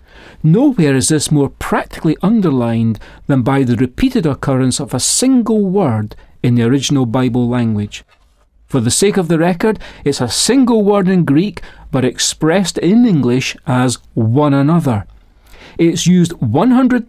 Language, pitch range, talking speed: English, 125-185 Hz, 150 wpm